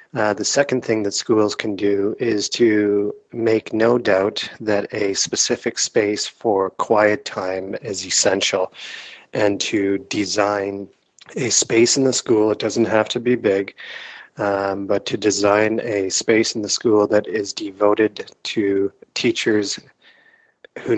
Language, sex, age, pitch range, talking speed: English, male, 30-49, 100-110 Hz, 145 wpm